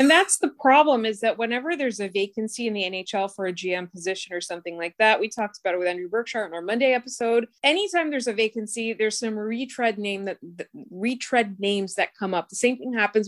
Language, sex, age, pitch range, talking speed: English, female, 20-39, 195-255 Hz, 225 wpm